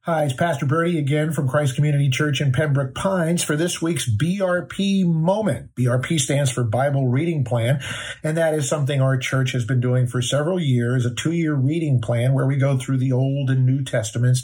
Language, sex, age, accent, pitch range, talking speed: English, male, 50-69, American, 125-155 Hz, 200 wpm